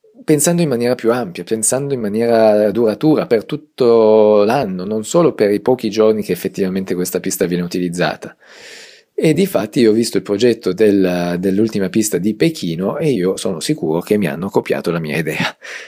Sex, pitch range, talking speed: male, 90-115 Hz, 180 wpm